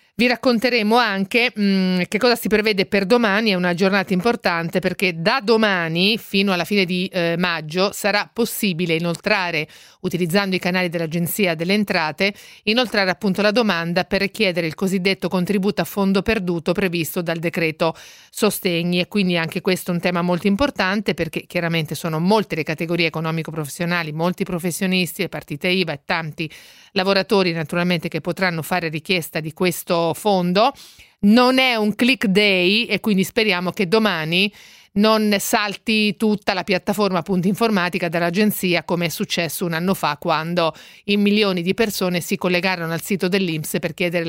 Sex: female